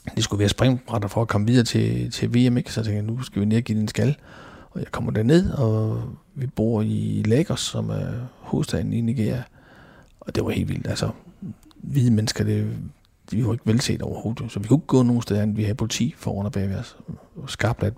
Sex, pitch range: male, 105-125 Hz